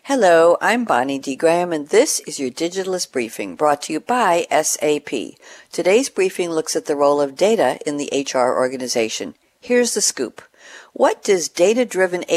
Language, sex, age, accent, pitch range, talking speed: English, female, 60-79, American, 140-215 Hz, 165 wpm